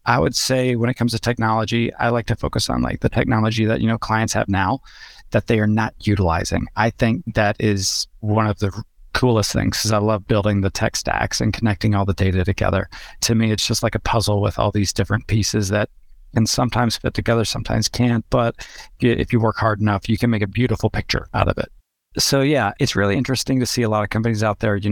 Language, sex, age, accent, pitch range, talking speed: English, male, 30-49, American, 100-115 Hz, 235 wpm